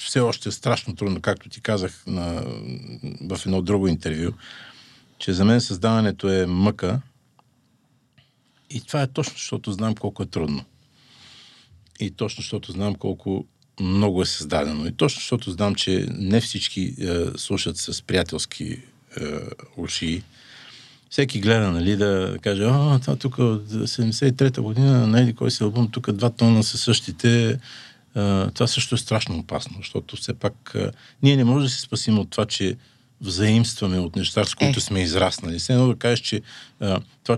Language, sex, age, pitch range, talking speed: Bulgarian, male, 50-69, 95-125 Hz, 160 wpm